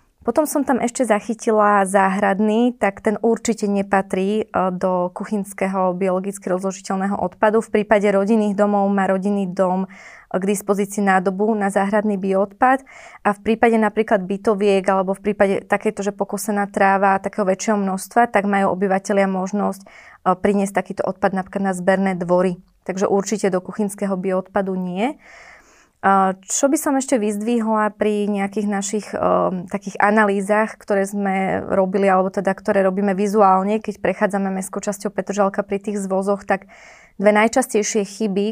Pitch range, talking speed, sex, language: 195-215 Hz, 140 wpm, female, Slovak